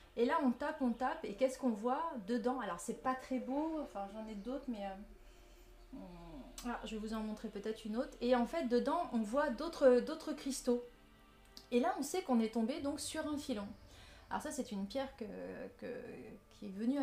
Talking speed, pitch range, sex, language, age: 215 wpm, 215-260 Hz, female, French, 30-49